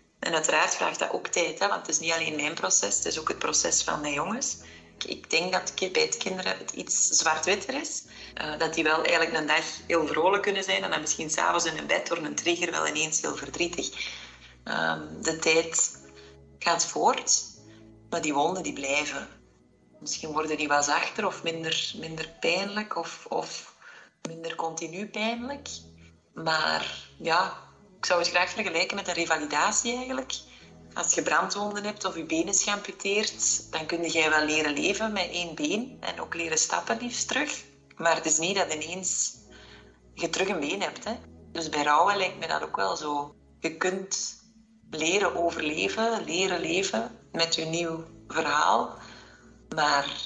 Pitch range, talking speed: 150-190 Hz, 175 wpm